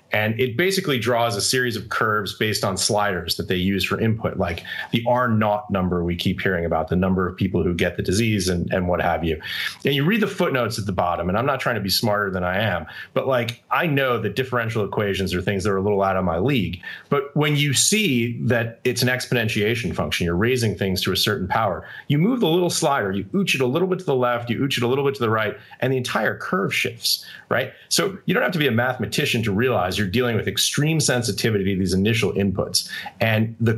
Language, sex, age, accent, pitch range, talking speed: English, male, 30-49, American, 95-125 Hz, 245 wpm